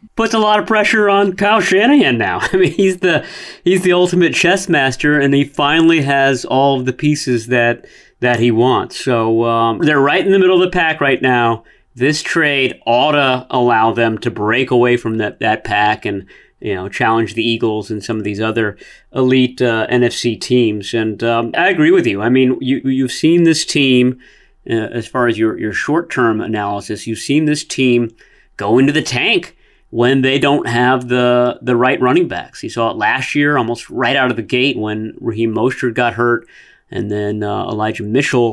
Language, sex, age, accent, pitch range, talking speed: English, male, 30-49, American, 115-145 Hz, 200 wpm